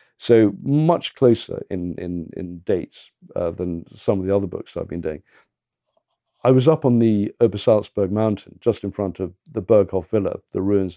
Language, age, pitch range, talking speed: English, 50-69, 95-125 Hz, 180 wpm